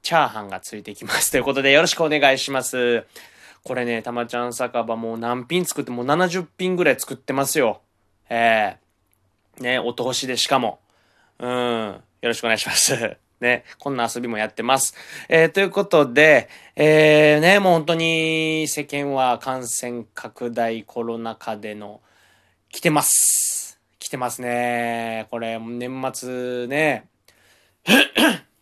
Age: 20-39